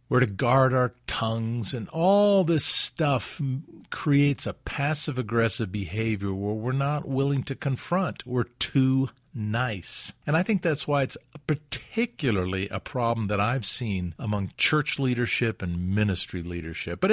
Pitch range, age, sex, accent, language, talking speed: 95-120 Hz, 50-69, male, American, English, 145 wpm